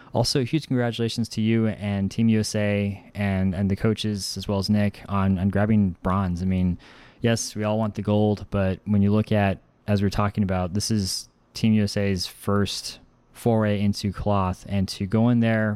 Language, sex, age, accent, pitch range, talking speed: English, male, 20-39, American, 95-110 Hz, 190 wpm